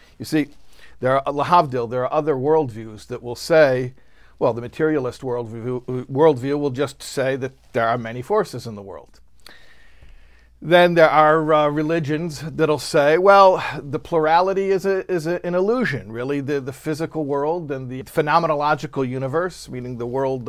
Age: 50-69